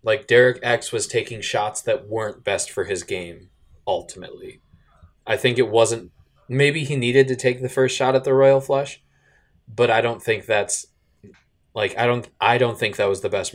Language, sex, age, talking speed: English, male, 20-39, 195 wpm